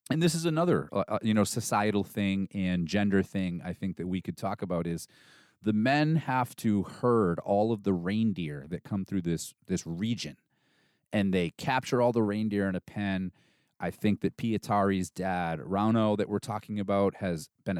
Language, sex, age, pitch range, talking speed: English, male, 30-49, 90-125 Hz, 190 wpm